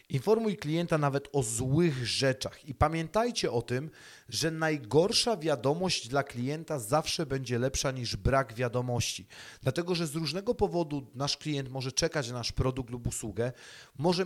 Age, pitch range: 30-49, 125-165 Hz